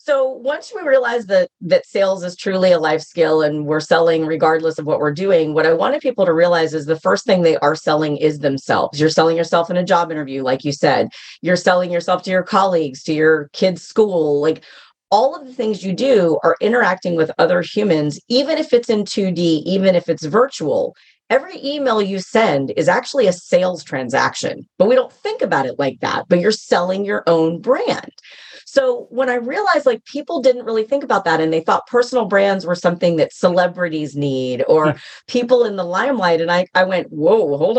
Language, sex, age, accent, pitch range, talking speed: English, female, 40-59, American, 160-250 Hz, 210 wpm